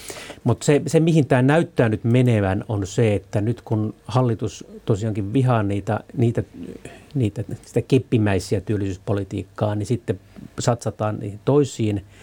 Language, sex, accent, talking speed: Finnish, male, native, 130 wpm